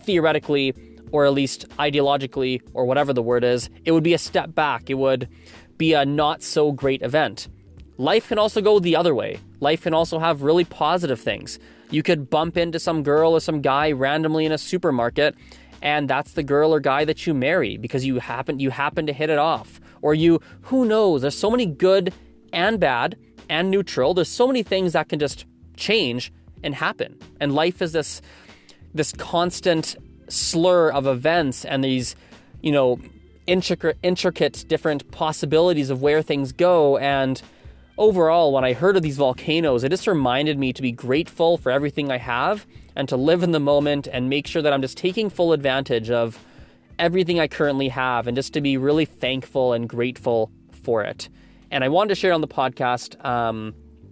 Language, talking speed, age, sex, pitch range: English, 190 wpm, 20-39, male, 125-165 Hz